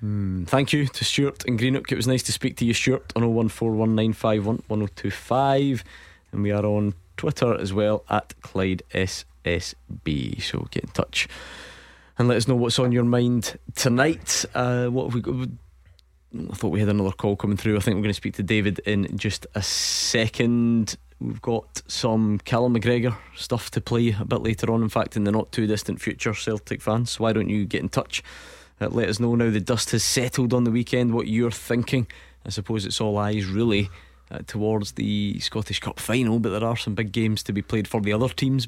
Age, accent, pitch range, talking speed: 20-39, British, 100-120 Hz, 205 wpm